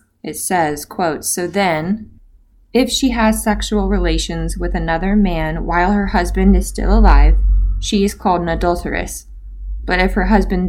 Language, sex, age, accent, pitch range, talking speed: English, female, 20-39, American, 155-195 Hz, 155 wpm